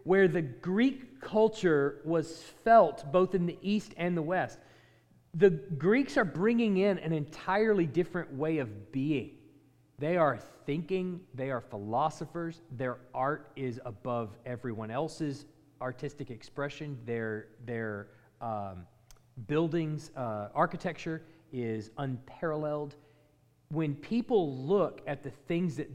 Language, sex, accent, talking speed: English, male, American, 125 wpm